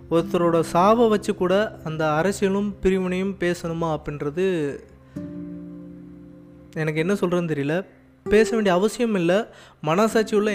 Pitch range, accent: 155-195 Hz, native